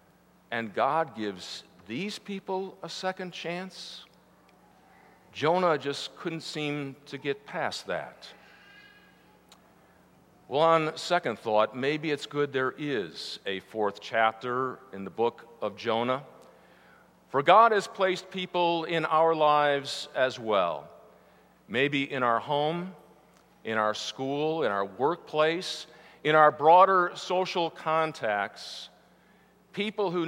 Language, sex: English, male